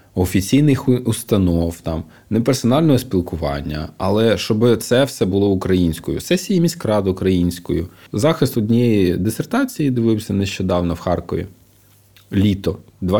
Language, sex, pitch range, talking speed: Ukrainian, male, 90-135 Hz, 100 wpm